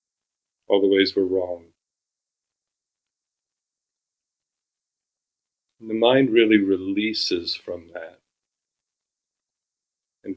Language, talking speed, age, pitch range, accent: English, 70 wpm, 30-49, 95-110 Hz, American